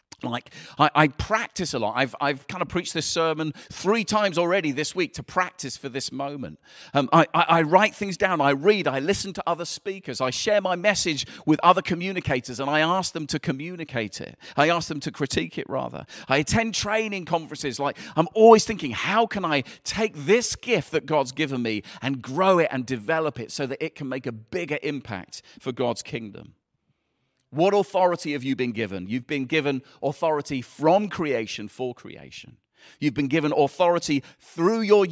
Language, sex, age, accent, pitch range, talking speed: English, male, 40-59, British, 130-170 Hz, 195 wpm